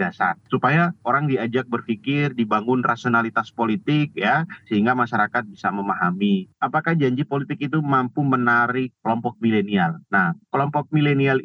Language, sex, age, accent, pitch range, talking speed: Indonesian, male, 30-49, native, 110-140 Hz, 125 wpm